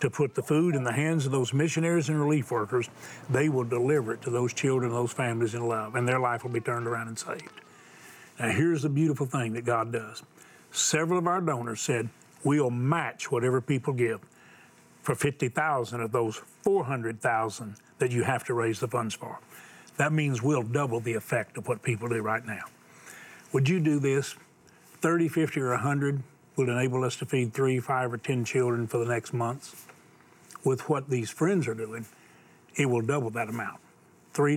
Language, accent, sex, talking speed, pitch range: English, American, male, 190 wpm, 115-140 Hz